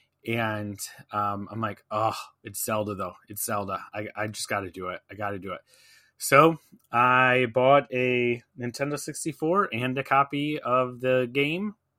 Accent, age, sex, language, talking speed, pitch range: American, 20-39, male, English, 170 wpm, 110-135 Hz